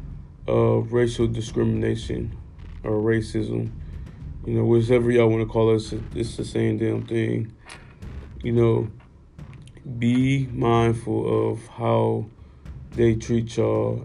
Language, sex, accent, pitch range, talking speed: English, male, American, 110-115 Hz, 120 wpm